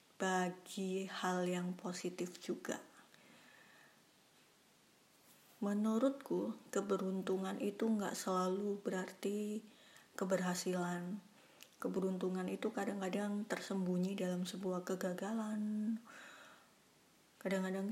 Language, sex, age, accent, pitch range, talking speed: Indonesian, female, 20-39, native, 185-210 Hz, 65 wpm